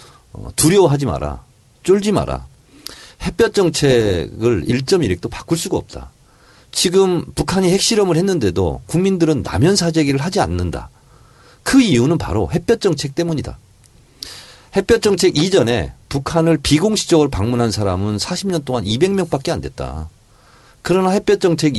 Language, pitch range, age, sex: Korean, 110-175 Hz, 40-59, male